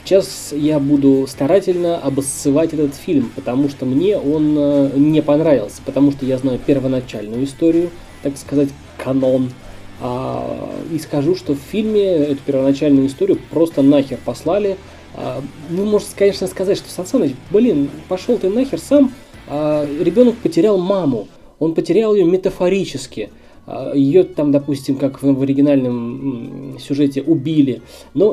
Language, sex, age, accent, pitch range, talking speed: Russian, male, 20-39, native, 135-170 Hz, 140 wpm